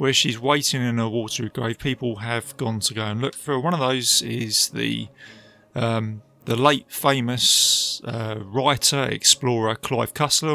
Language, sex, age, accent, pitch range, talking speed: English, male, 30-49, British, 115-140 Hz, 170 wpm